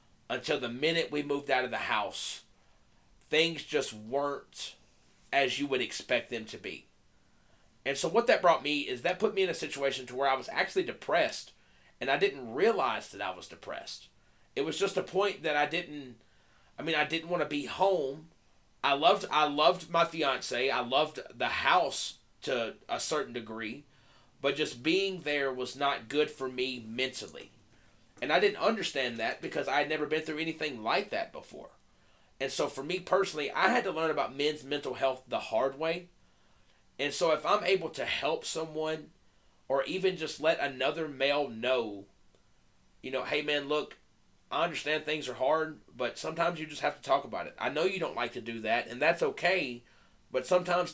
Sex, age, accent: male, 30-49, American